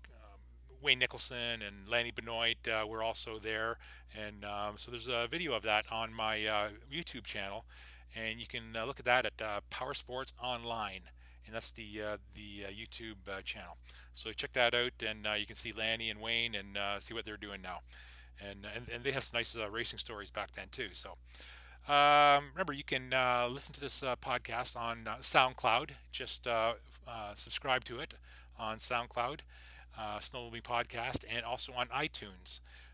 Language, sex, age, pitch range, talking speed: English, male, 30-49, 100-120 Hz, 190 wpm